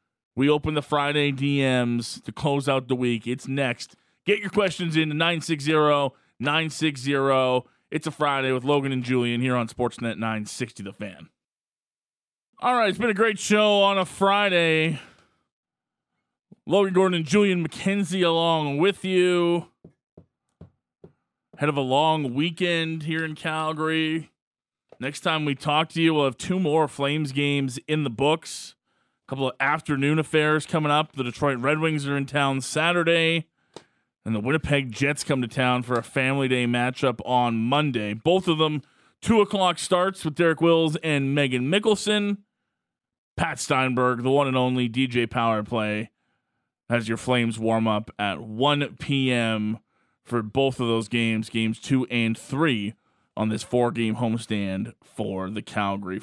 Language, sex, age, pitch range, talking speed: English, male, 20-39, 120-160 Hz, 155 wpm